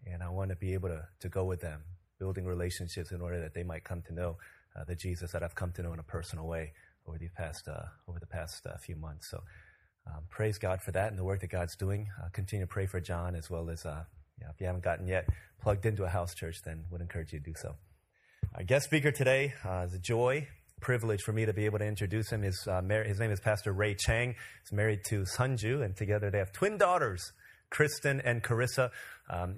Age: 30-49